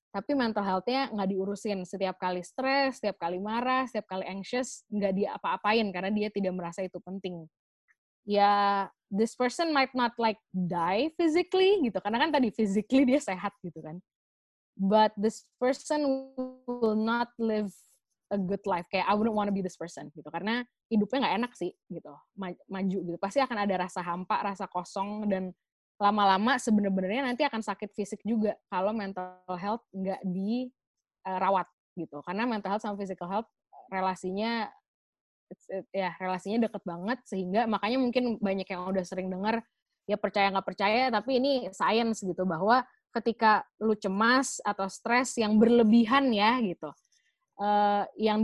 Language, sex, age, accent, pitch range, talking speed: Indonesian, female, 20-39, native, 190-235 Hz, 160 wpm